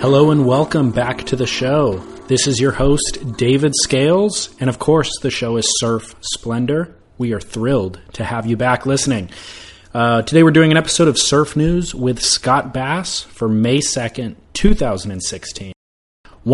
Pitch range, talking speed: 110-140 Hz, 165 wpm